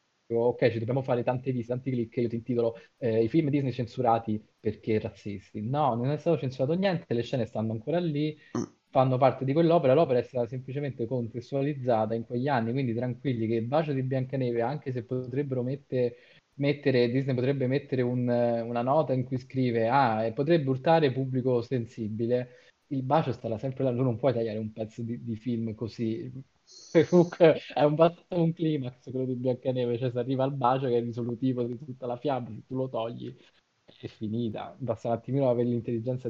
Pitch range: 115-140 Hz